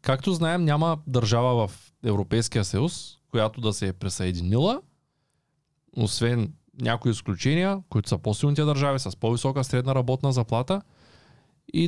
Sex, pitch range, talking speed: male, 115-145 Hz, 125 wpm